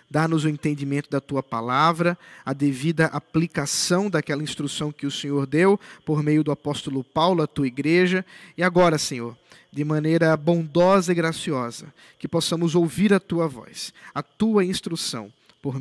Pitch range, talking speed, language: 150-205 Hz, 155 wpm, Portuguese